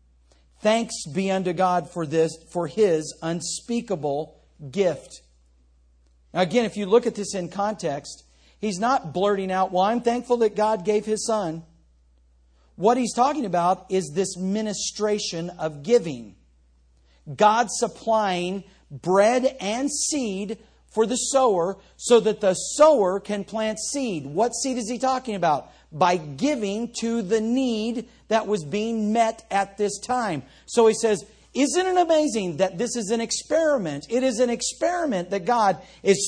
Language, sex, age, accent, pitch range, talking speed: English, male, 50-69, American, 170-245 Hz, 150 wpm